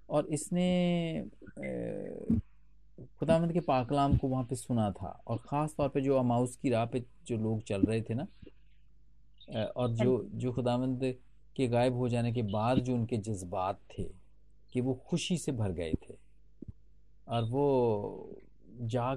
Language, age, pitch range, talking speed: Hindi, 40-59, 115-145 Hz, 155 wpm